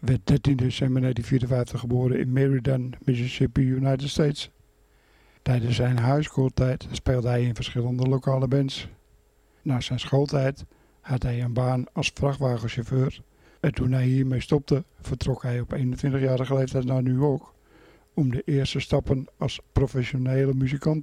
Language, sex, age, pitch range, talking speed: Dutch, male, 60-79, 125-140 Hz, 135 wpm